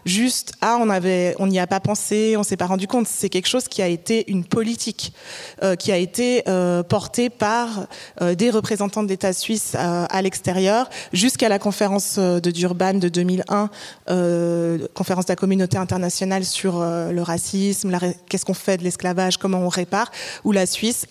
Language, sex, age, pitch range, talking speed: French, female, 20-39, 180-220 Hz, 190 wpm